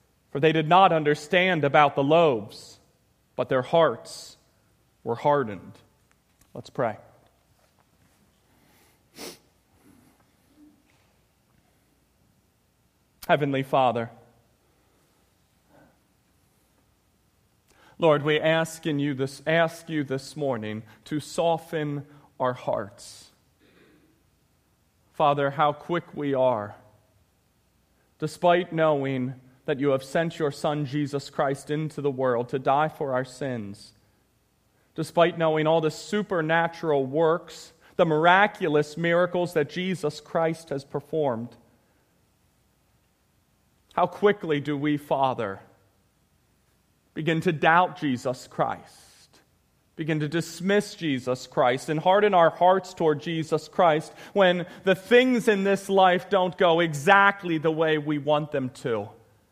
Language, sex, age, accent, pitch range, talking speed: English, male, 40-59, American, 135-170 Hz, 105 wpm